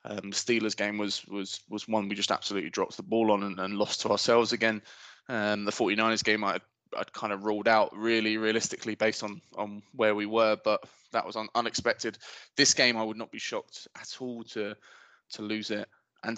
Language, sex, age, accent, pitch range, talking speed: English, male, 20-39, British, 105-125 Hz, 210 wpm